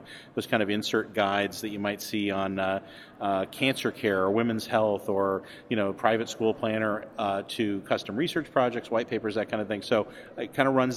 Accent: American